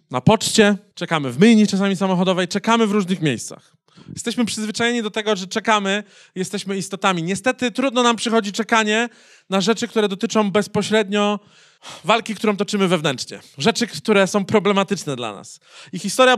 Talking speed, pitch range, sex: 150 wpm, 175-215 Hz, male